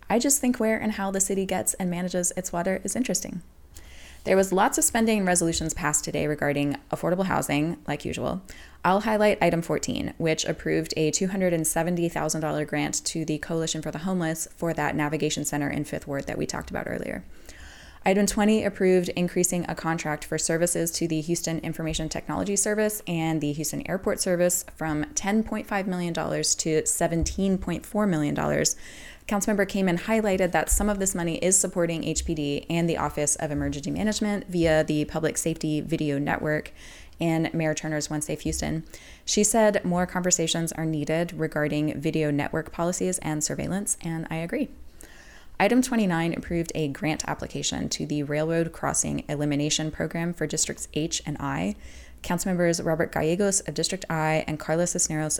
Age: 20-39